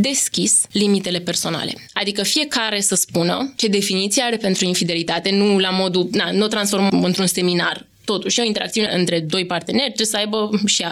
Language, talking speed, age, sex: Romanian, 170 wpm, 20-39, female